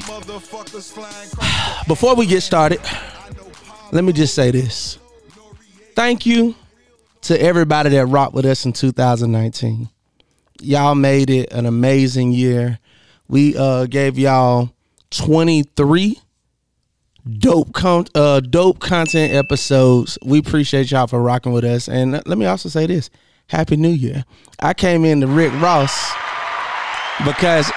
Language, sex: English, male